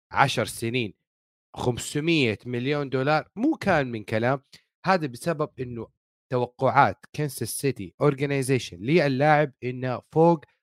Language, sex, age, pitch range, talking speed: Arabic, male, 40-59, 120-180 Hz, 105 wpm